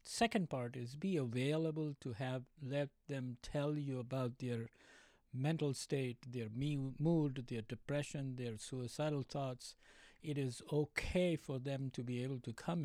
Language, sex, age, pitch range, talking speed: English, male, 60-79, 125-150 Hz, 150 wpm